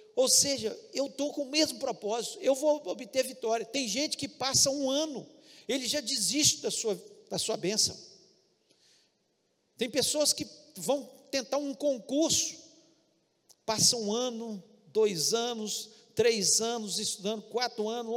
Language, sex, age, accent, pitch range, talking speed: Portuguese, male, 50-69, Brazilian, 200-270 Hz, 140 wpm